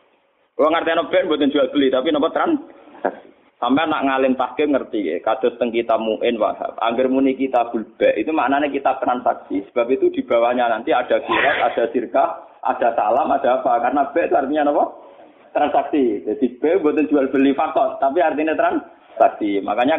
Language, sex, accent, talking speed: Indonesian, male, native, 175 wpm